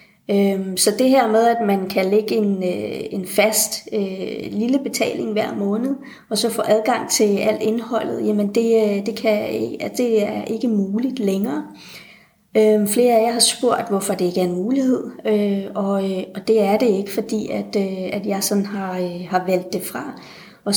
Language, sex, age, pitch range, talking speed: Danish, female, 30-49, 200-225 Hz, 155 wpm